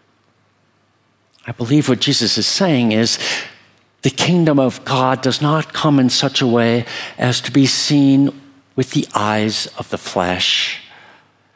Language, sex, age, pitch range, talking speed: English, male, 60-79, 105-140 Hz, 145 wpm